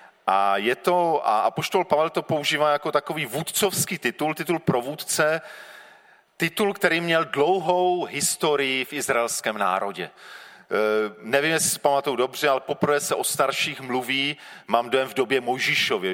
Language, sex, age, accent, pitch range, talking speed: Czech, male, 40-59, native, 120-175 Hz, 150 wpm